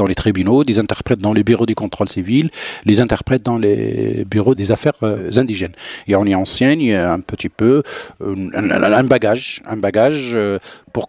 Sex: male